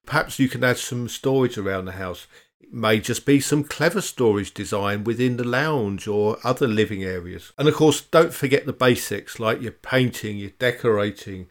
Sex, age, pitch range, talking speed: male, 50-69, 105-130 Hz, 190 wpm